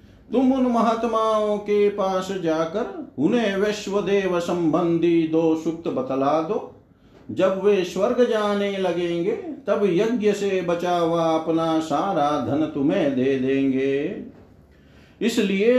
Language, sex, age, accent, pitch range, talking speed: Hindi, male, 50-69, native, 140-205 Hz, 120 wpm